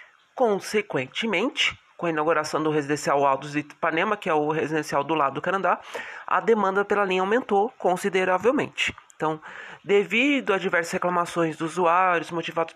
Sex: male